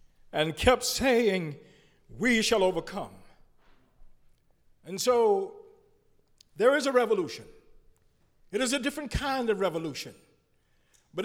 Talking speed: 105 wpm